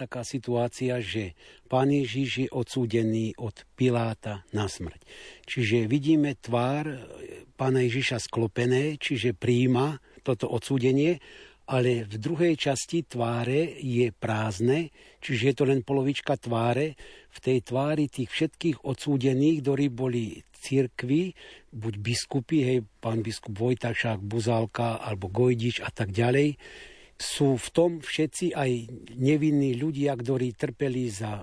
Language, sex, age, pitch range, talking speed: Slovak, male, 60-79, 115-140 Hz, 125 wpm